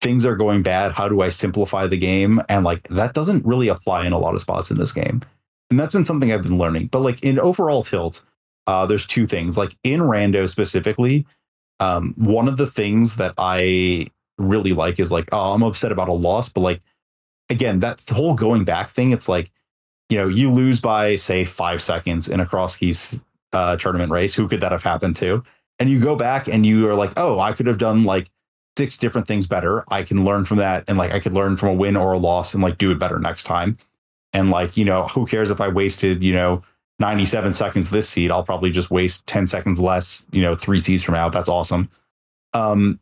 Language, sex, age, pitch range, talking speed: English, male, 30-49, 90-115 Hz, 225 wpm